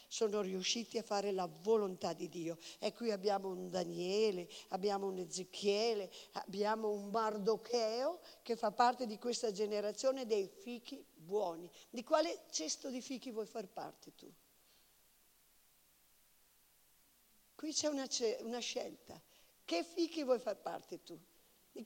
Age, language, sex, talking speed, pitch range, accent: 50-69, Italian, female, 130 wpm, 205-300 Hz, native